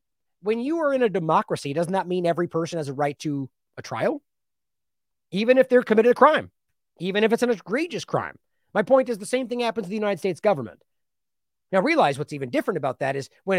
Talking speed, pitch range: 220 wpm, 150-210 Hz